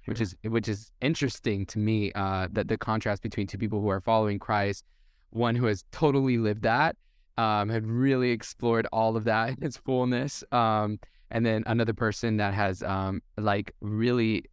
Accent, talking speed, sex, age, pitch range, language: American, 180 wpm, male, 10-29, 100-120 Hz, English